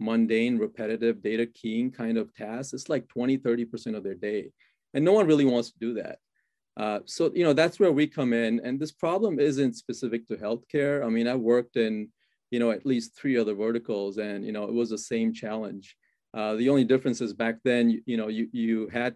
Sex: male